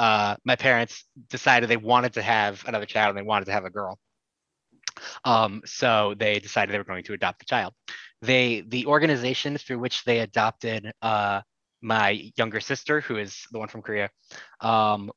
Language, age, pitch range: English, 20-39, 105-125 Hz